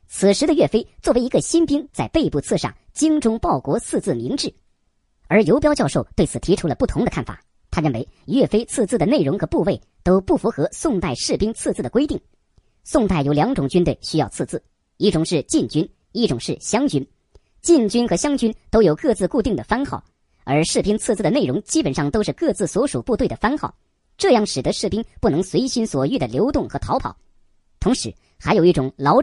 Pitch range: 150-245 Hz